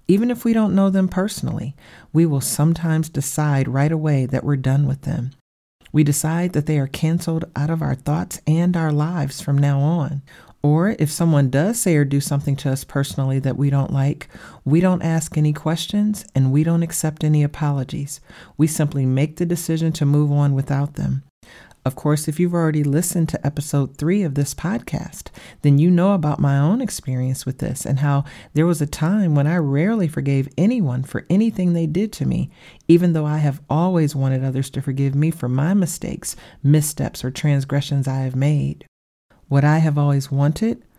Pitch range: 140-165 Hz